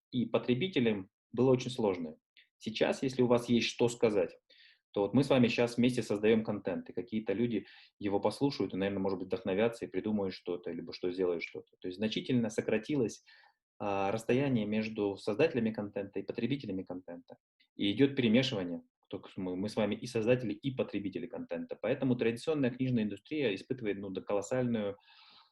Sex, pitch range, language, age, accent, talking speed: male, 100-125 Hz, Russian, 20-39, native, 160 wpm